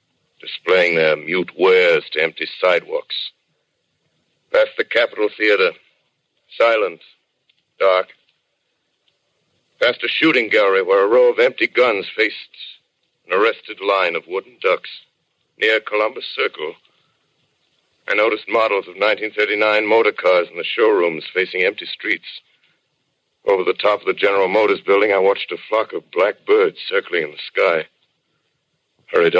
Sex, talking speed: male, 135 wpm